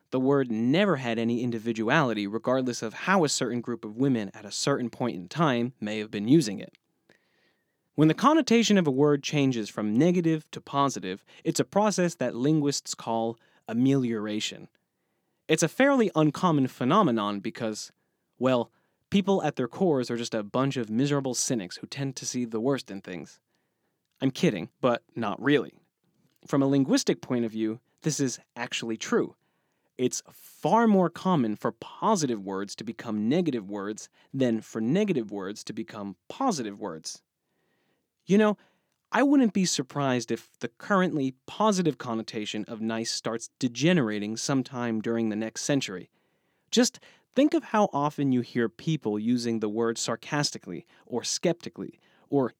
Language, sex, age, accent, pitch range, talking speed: English, male, 30-49, American, 115-160 Hz, 155 wpm